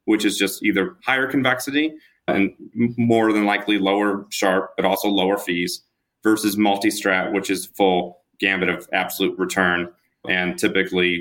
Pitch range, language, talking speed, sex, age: 95-115 Hz, English, 145 wpm, male, 30-49